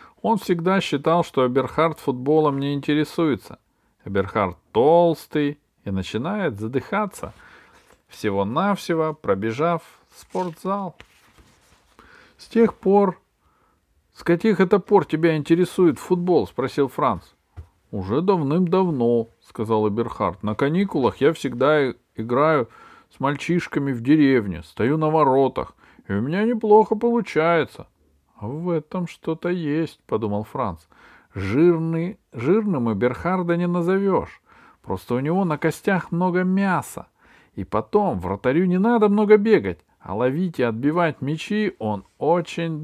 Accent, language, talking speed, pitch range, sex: native, Russian, 115 wpm, 125-185 Hz, male